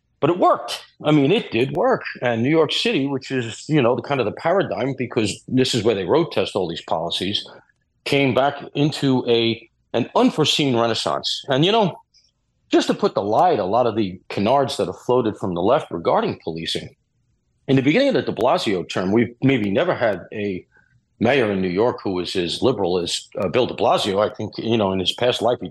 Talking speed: 220 wpm